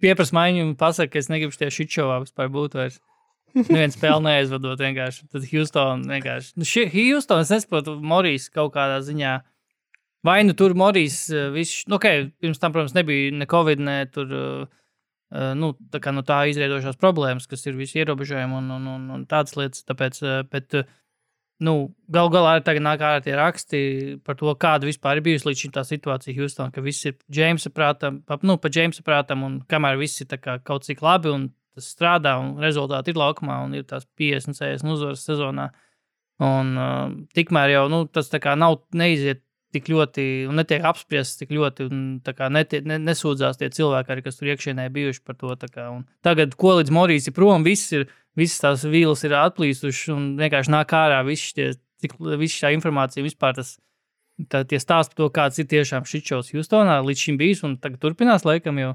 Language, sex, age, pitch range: English, male, 20-39, 135-160 Hz